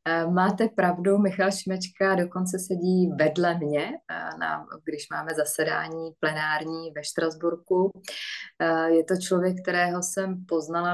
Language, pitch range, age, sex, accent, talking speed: Czech, 150-175 Hz, 20-39, female, native, 110 wpm